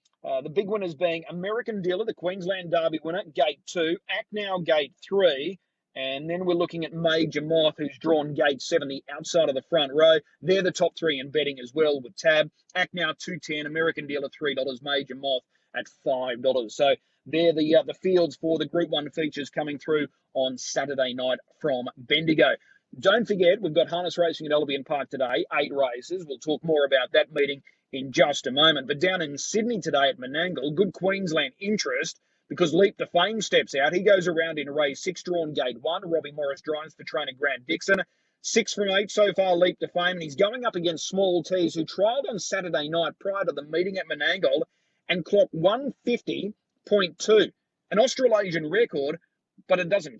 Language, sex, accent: English, male, Australian